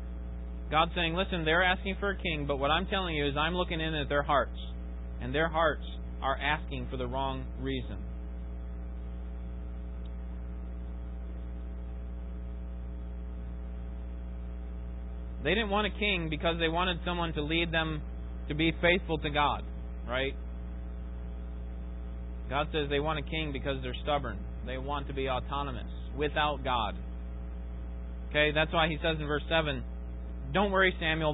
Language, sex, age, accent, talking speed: English, male, 30-49, American, 140 wpm